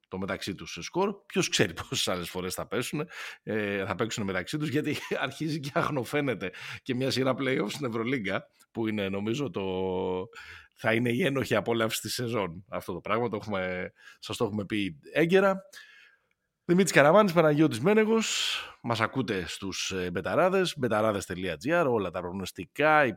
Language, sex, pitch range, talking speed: Greek, male, 95-140 Hz, 150 wpm